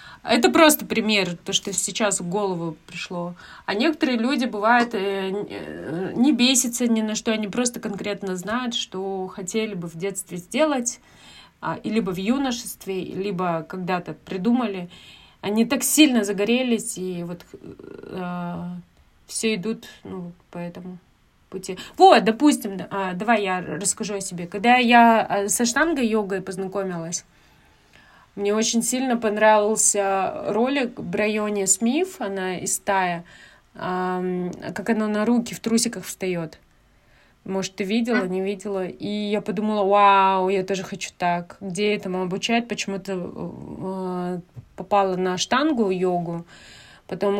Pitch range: 185-225 Hz